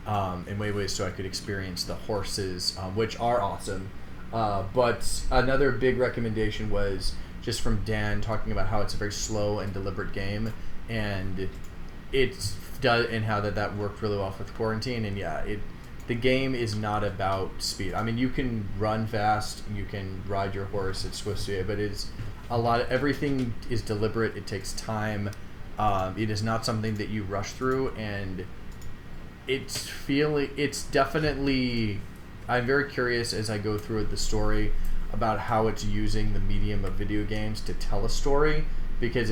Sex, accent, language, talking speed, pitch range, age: male, American, English, 175 wpm, 100-115 Hz, 20-39